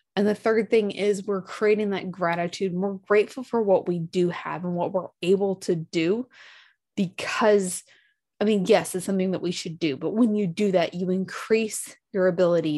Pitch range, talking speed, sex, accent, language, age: 175-220 Hz, 195 wpm, female, American, English, 20-39